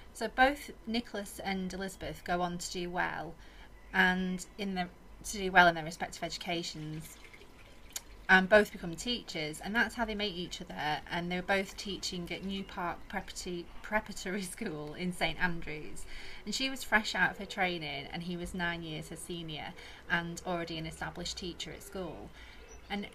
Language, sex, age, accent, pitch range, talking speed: English, female, 30-49, British, 175-200 Hz, 175 wpm